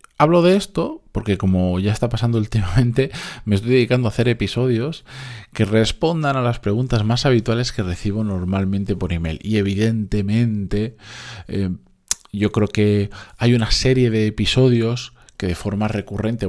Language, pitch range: Spanish, 95-120 Hz